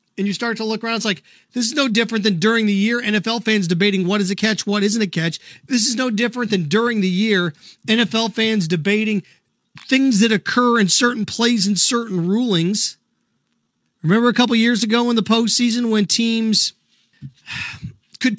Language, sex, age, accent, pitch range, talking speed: English, male, 40-59, American, 195-240 Hz, 190 wpm